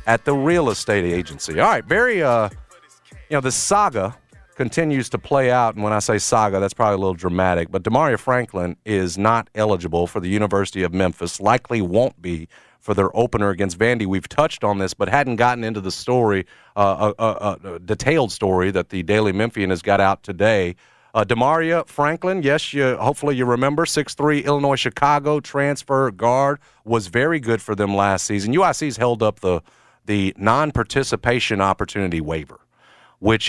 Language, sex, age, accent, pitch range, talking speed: English, male, 40-59, American, 90-125 Hz, 175 wpm